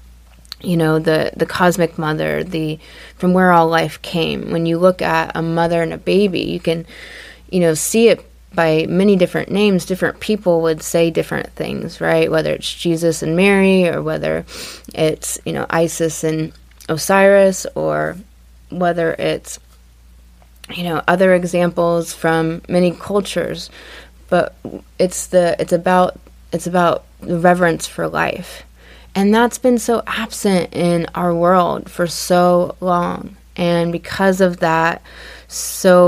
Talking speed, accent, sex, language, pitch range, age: 145 wpm, American, female, English, 160-180 Hz, 20-39